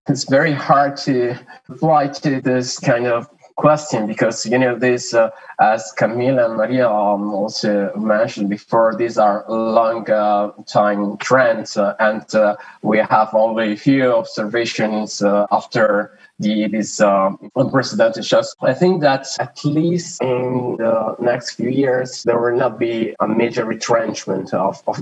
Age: 20-39